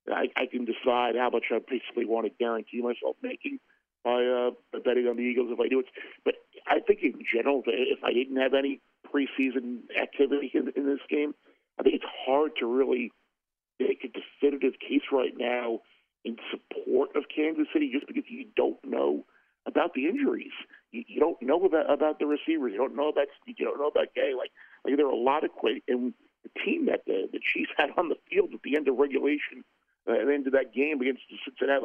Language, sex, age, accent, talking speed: English, male, 50-69, American, 215 wpm